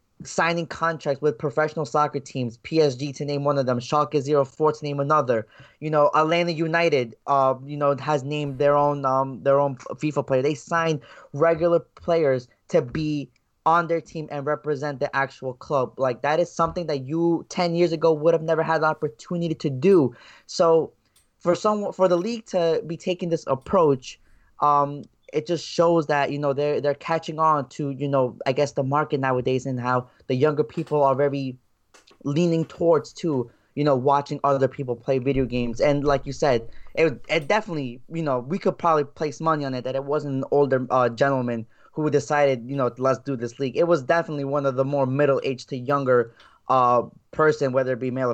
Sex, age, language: male, 20-39, English